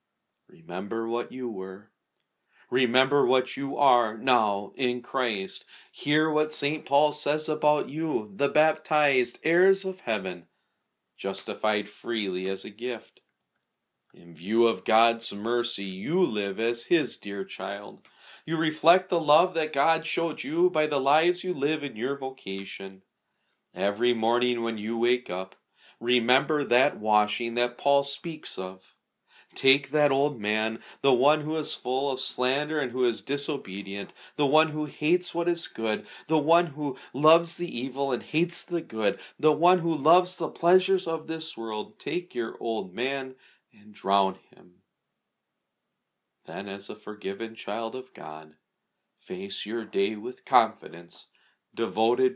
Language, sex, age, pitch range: English, male, 40-59, 115-155 Hz